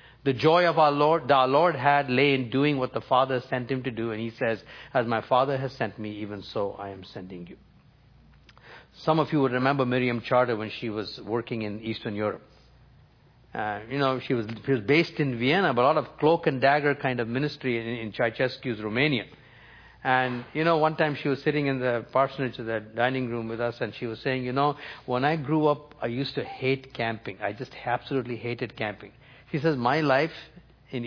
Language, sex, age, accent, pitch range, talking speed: English, male, 50-69, Indian, 120-140 Hz, 220 wpm